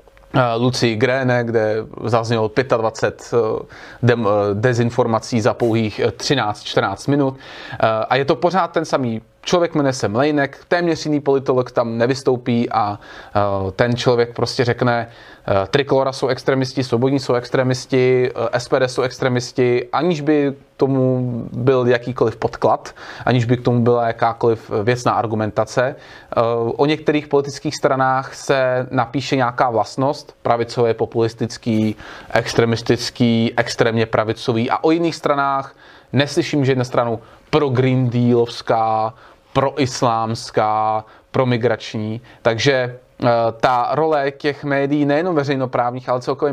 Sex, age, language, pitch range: male, 20-39, Czech, 115-145 Hz